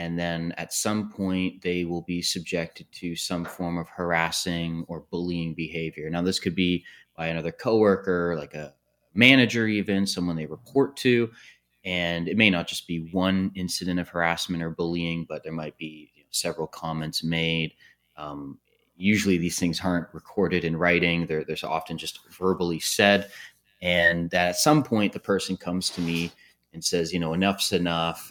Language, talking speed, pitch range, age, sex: English, 170 wpm, 80-95 Hz, 30-49, male